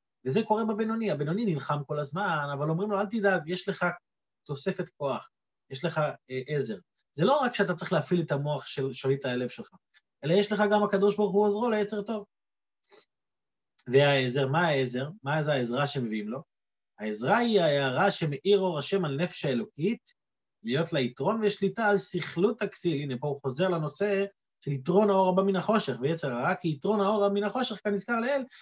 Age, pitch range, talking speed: 30-49, 150-210 Hz, 180 wpm